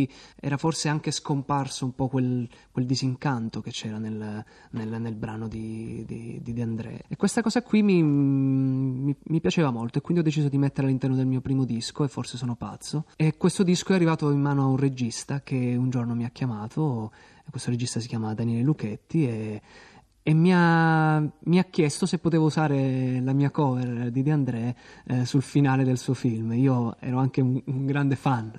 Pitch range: 120-145 Hz